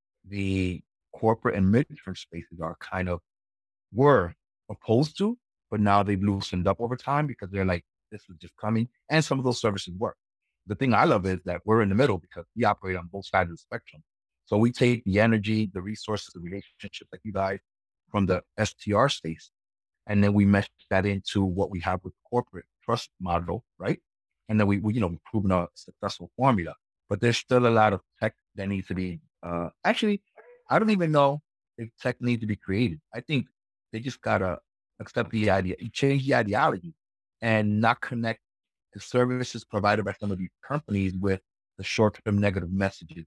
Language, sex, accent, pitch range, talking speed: English, male, American, 95-120 Hz, 195 wpm